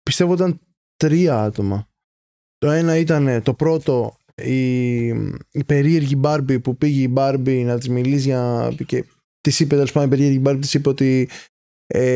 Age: 20-39